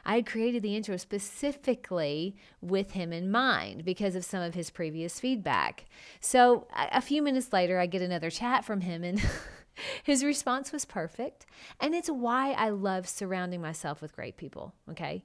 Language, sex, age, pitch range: English, female, 30-49, 180-260 Hz